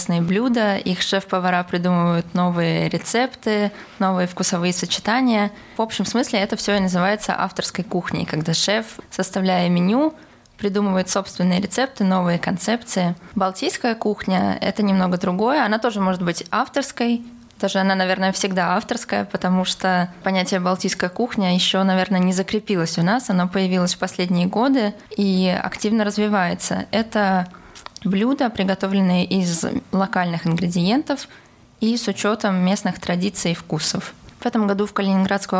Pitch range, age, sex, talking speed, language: 180-210 Hz, 20-39, female, 130 wpm, Russian